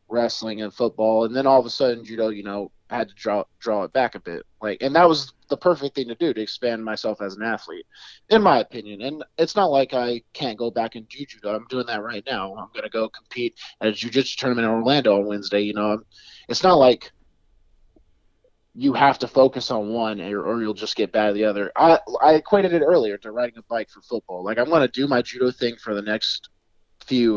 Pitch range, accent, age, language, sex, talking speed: 110-135 Hz, American, 30-49, English, male, 245 wpm